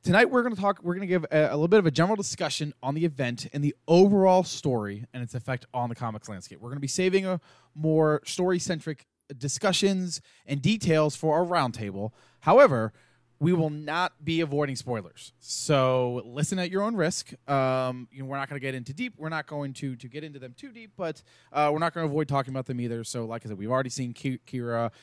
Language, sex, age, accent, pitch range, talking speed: English, male, 20-39, American, 120-165 Hz, 235 wpm